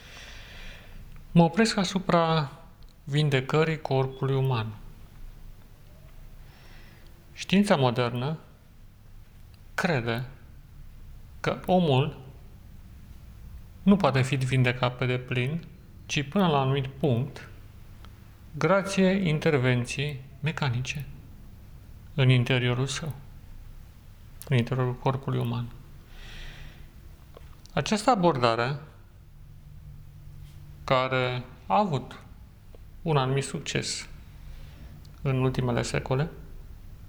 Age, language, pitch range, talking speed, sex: 40-59, Romanian, 105-140 Hz, 70 wpm, male